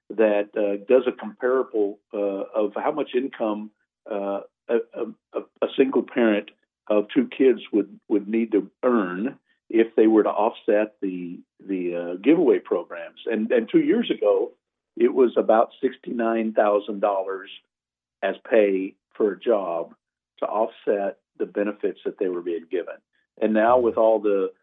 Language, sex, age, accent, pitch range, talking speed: English, male, 50-69, American, 100-135 Hz, 150 wpm